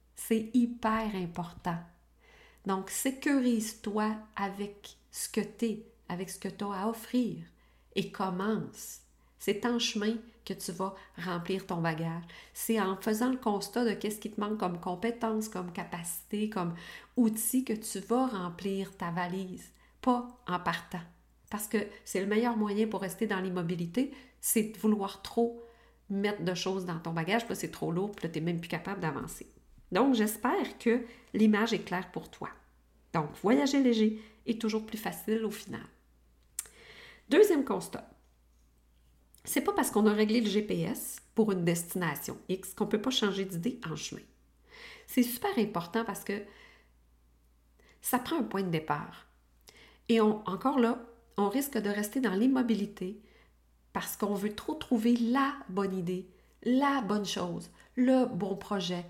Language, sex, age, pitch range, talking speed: French, female, 40-59, 180-230 Hz, 160 wpm